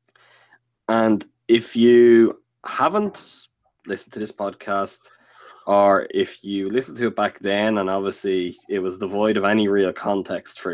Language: English